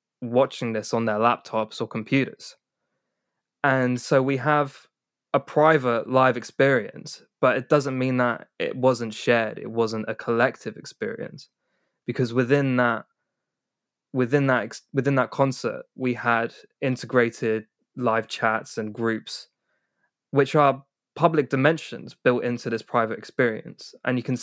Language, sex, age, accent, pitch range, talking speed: English, male, 20-39, British, 115-135 Hz, 135 wpm